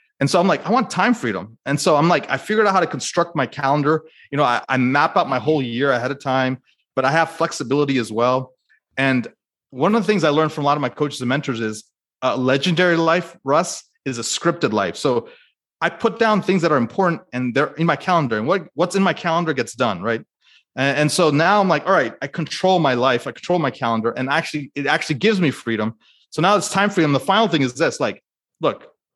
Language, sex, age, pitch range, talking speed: English, male, 30-49, 135-180 Hz, 245 wpm